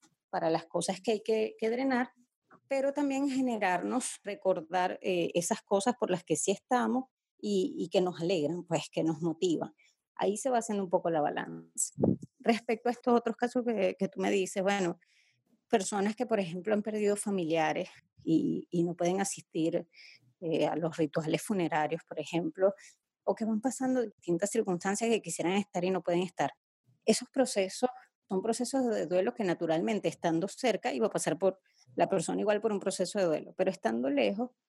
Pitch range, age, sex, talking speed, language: 170-225 Hz, 30-49, female, 180 wpm, Spanish